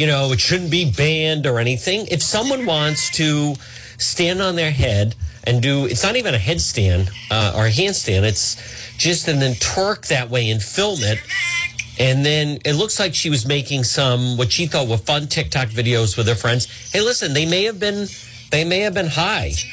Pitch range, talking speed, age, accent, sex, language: 115-170 Hz, 205 wpm, 40-59, American, male, English